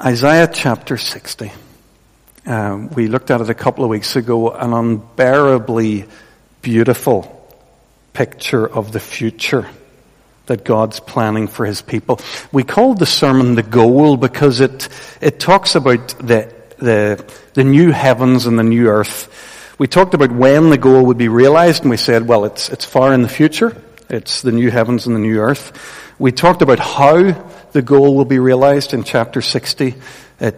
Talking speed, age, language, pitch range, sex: 170 wpm, 60-79, English, 115-140 Hz, male